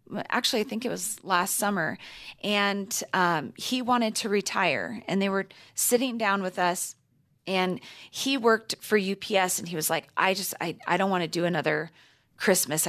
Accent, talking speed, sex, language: American, 180 wpm, female, English